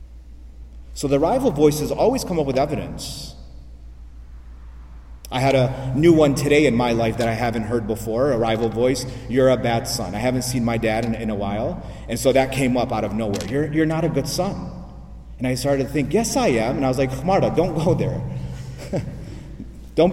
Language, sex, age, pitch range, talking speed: English, male, 30-49, 100-140 Hz, 210 wpm